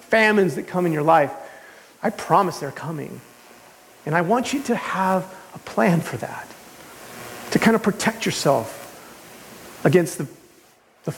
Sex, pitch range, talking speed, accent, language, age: male, 150-195 Hz, 150 wpm, American, English, 40-59